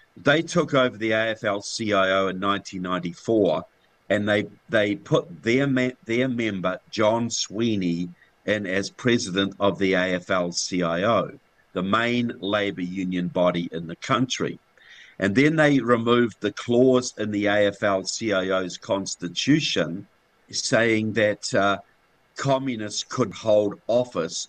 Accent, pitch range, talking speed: Australian, 90-120 Hz, 120 wpm